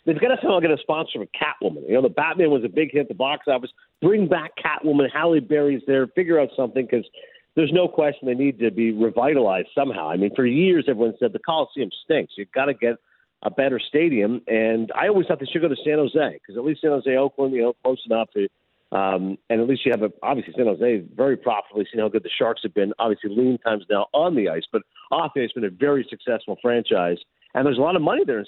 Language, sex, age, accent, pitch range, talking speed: English, male, 50-69, American, 115-155 Hz, 255 wpm